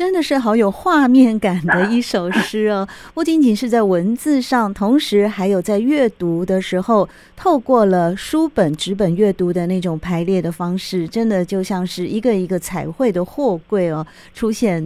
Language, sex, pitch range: Chinese, female, 175-240 Hz